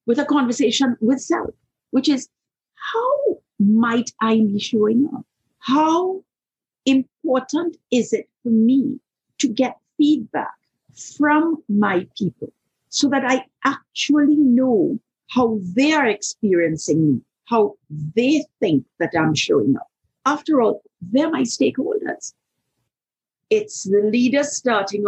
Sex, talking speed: female, 120 wpm